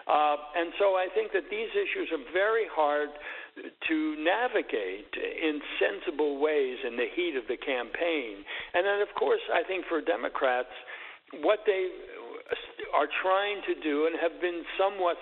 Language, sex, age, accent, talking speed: English, male, 60-79, American, 160 wpm